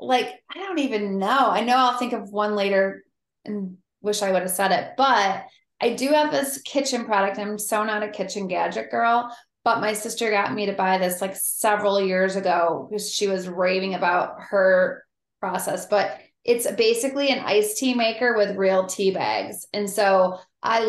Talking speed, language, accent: 190 wpm, English, American